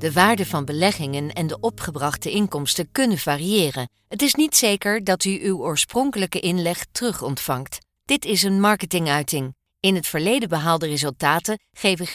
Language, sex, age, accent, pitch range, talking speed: Dutch, female, 40-59, Dutch, 165-215 Hz, 150 wpm